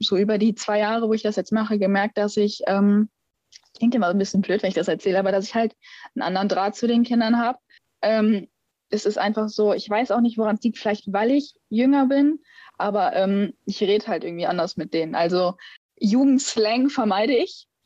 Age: 20-39